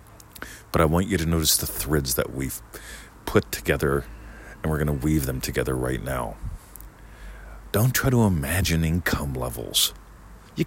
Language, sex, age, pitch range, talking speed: English, male, 40-59, 75-110 Hz, 155 wpm